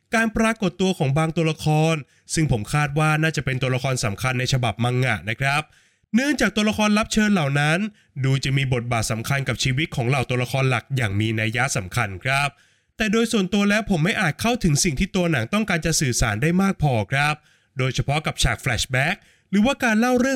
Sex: male